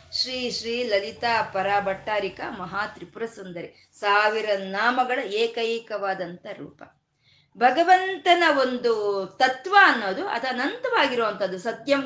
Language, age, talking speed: Kannada, 20-39, 85 wpm